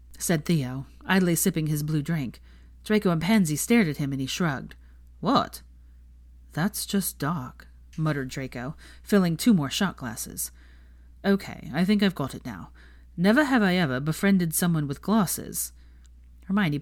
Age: 30-49